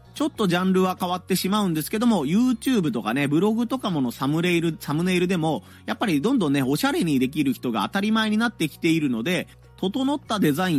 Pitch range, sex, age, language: 135-225 Hz, male, 30-49, Japanese